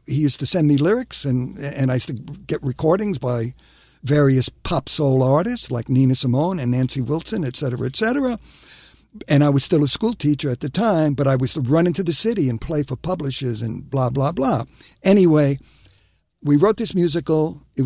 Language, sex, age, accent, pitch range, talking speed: English, male, 60-79, American, 135-170 Hz, 200 wpm